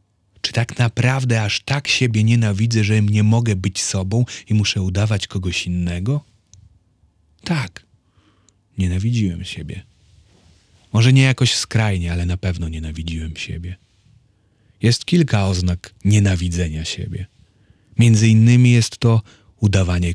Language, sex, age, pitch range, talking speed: Polish, male, 40-59, 95-115 Hz, 115 wpm